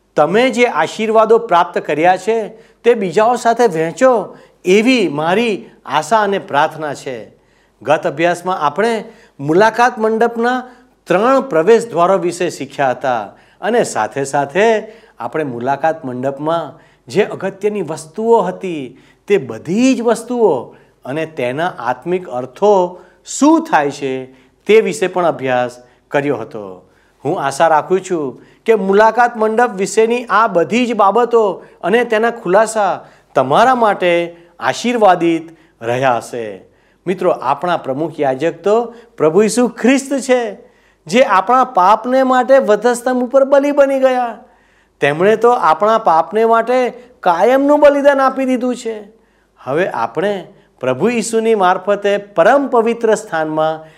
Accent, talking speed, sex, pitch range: native, 105 wpm, male, 160-235 Hz